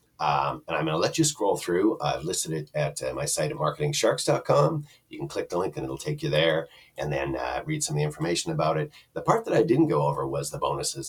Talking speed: 265 wpm